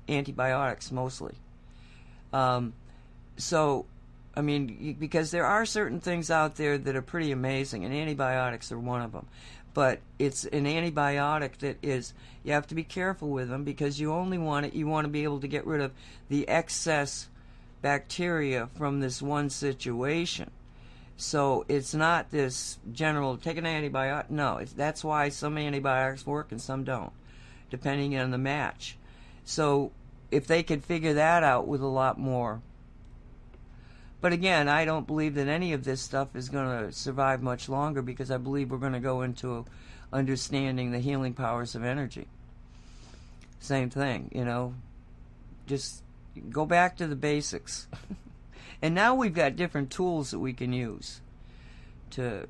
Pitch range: 125-150 Hz